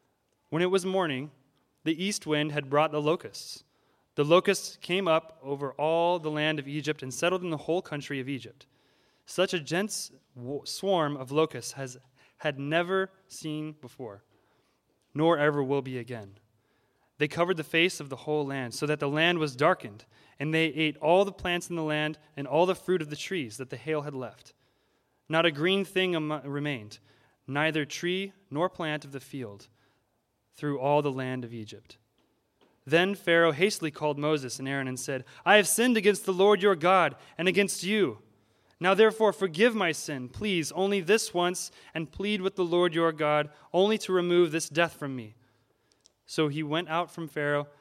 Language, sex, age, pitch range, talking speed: English, male, 20-39, 135-175 Hz, 185 wpm